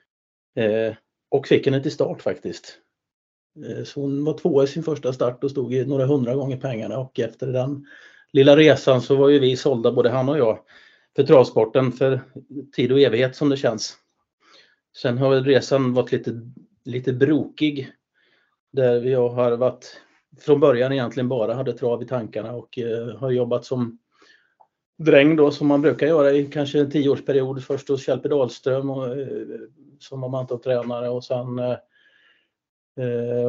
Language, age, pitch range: Swedish, 30-49, 120-145 Hz